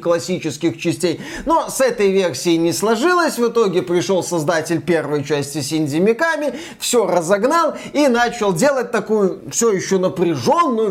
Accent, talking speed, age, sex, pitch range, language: native, 140 wpm, 20-39, male, 180-250 Hz, Russian